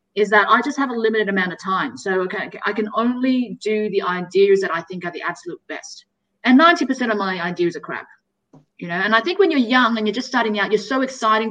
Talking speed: 250 wpm